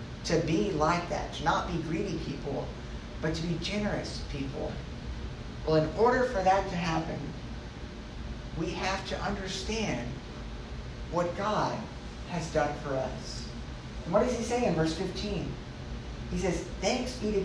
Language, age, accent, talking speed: English, 50-69, American, 150 wpm